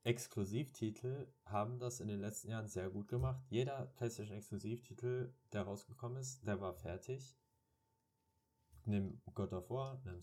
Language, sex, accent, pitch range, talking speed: German, male, German, 95-120 Hz, 135 wpm